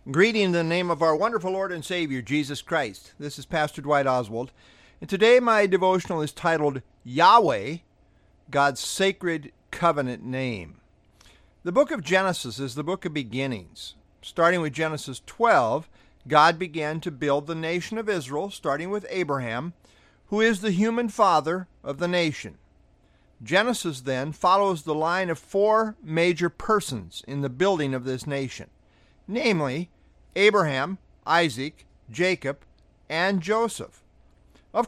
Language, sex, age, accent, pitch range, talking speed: English, male, 50-69, American, 135-190 Hz, 140 wpm